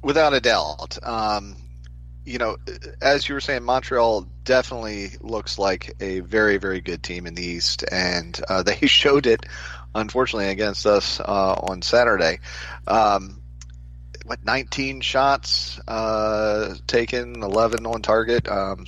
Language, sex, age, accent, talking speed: English, male, 30-49, American, 135 wpm